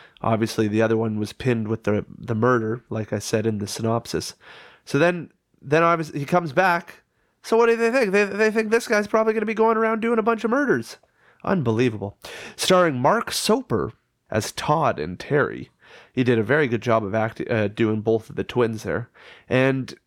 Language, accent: English, American